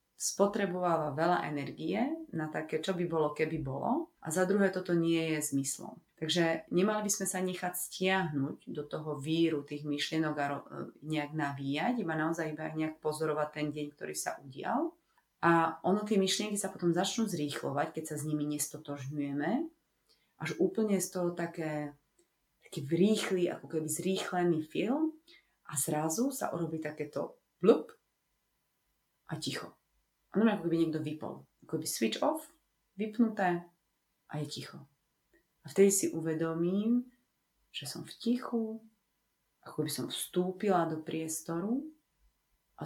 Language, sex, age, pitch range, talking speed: Slovak, female, 30-49, 150-190 Hz, 145 wpm